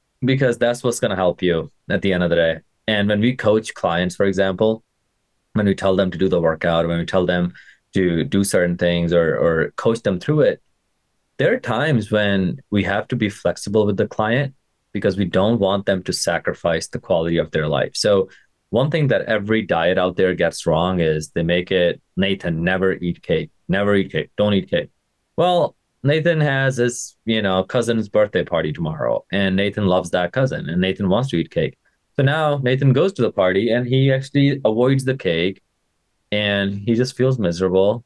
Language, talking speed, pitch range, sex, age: English, 205 wpm, 90-120 Hz, male, 20-39